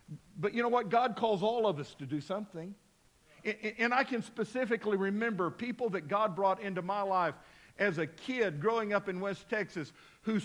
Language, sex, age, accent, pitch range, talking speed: English, male, 50-69, American, 180-220 Hz, 190 wpm